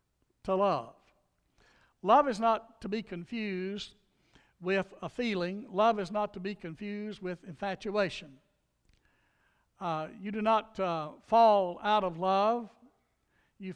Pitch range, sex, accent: 165-200 Hz, male, American